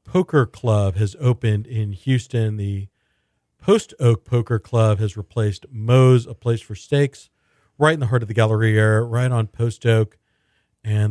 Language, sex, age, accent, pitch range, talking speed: English, male, 40-59, American, 105-125 Hz, 160 wpm